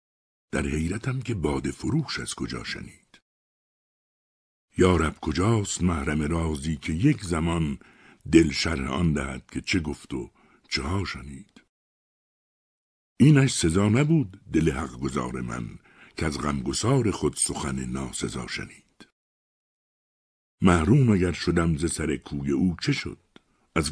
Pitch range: 70-100 Hz